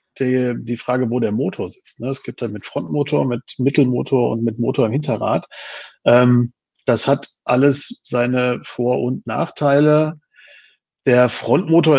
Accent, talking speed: German, 155 wpm